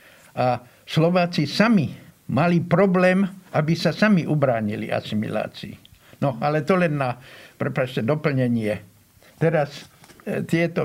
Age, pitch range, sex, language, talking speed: 60-79, 130-165 Hz, male, Slovak, 105 wpm